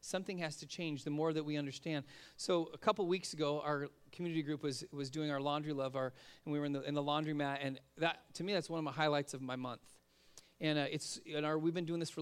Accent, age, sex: American, 40-59, male